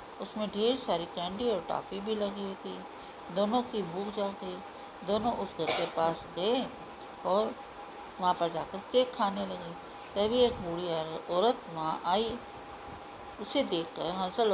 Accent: native